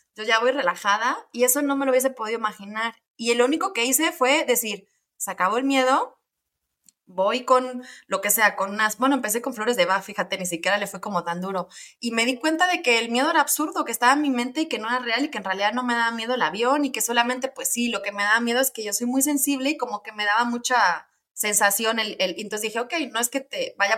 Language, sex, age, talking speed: Spanish, female, 20-39, 270 wpm